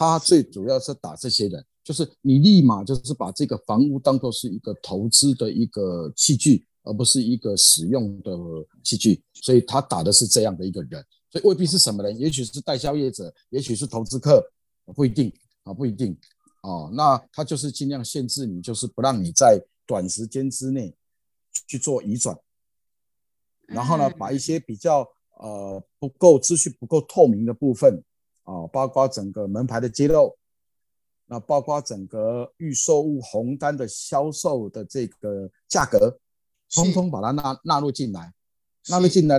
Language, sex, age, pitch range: Chinese, male, 50-69, 115-165 Hz